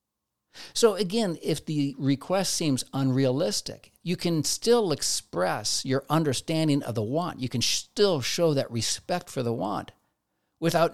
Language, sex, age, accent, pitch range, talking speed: English, male, 50-69, American, 115-160 Hz, 145 wpm